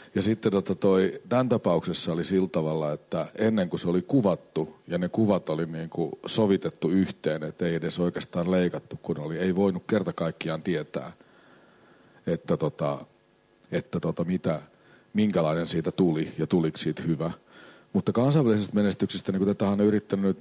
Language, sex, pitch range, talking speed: Finnish, male, 80-100 Hz, 155 wpm